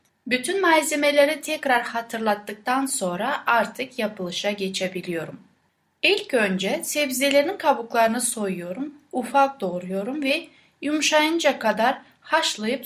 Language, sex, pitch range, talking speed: Turkish, female, 210-275 Hz, 90 wpm